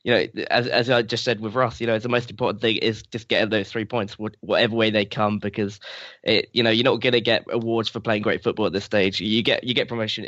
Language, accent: English, British